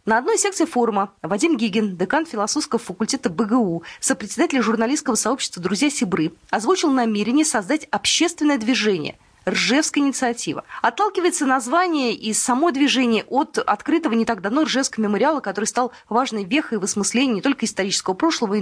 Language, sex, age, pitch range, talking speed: Russian, female, 20-39, 210-300 Hz, 145 wpm